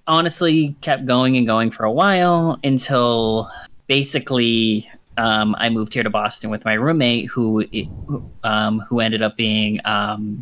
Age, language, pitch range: 30-49, English, 115-150 Hz